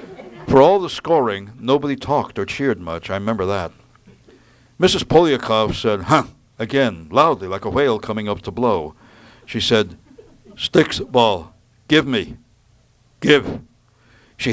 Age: 60-79